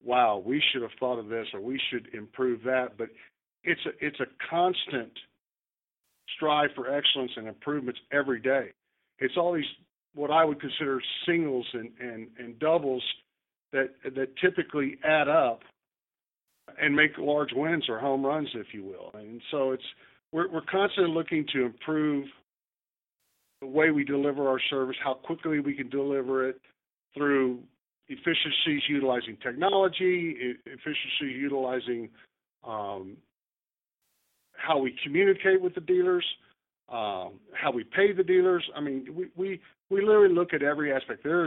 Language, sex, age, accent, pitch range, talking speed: English, male, 50-69, American, 125-160 Hz, 150 wpm